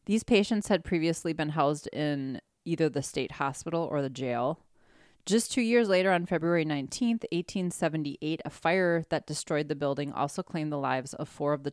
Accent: American